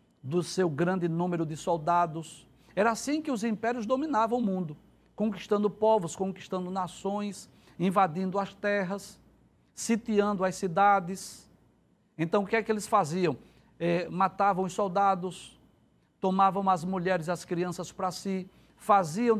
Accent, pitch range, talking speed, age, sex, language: Brazilian, 180-230 Hz, 135 wpm, 60-79, male, Portuguese